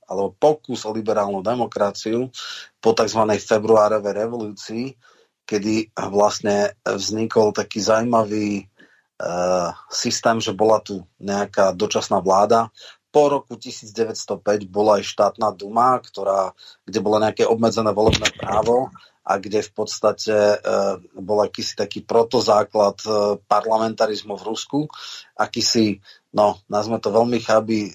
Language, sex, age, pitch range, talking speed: Slovak, male, 30-49, 100-115 Hz, 120 wpm